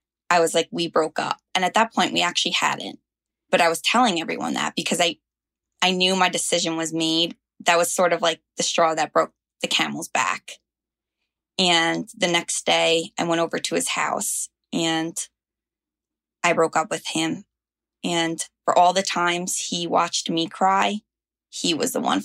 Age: 20-39